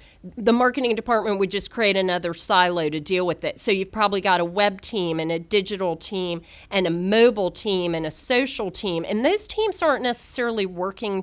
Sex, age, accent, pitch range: female, 40-59, American, 175-230 Hz